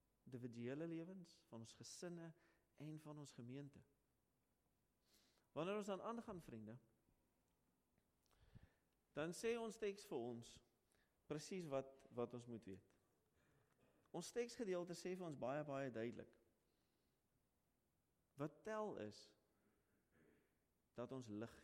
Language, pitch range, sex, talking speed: English, 120-180 Hz, male, 115 wpm